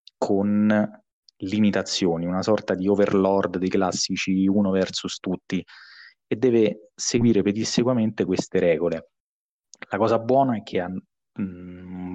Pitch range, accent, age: 90-110 Hz, native, 20-39